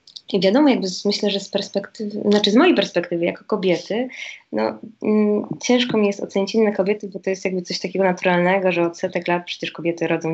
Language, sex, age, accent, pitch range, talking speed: Polish, female, 20-39, native, 175-215 Hz, 205 wpm